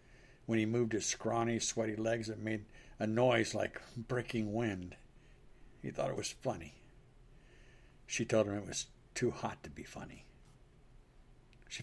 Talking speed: 150 wpm